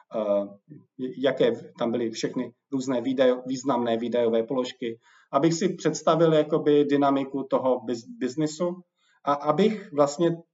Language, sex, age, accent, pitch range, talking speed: Czech, male, 40-59, native, 130-165 Hz, 100 wpm